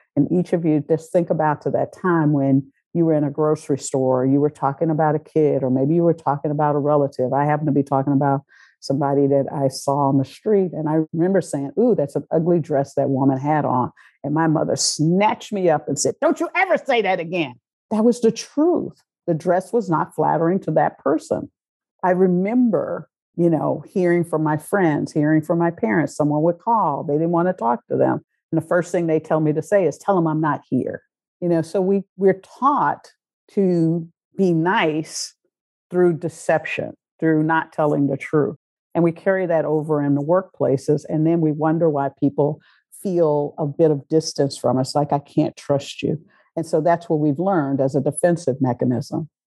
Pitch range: 145-180 Hz